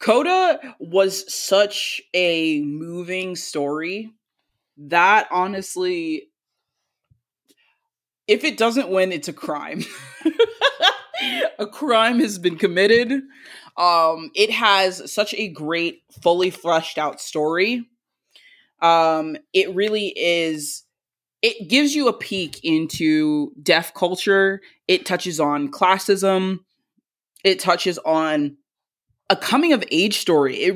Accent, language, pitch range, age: American, English, 165-220 Hz, 20-39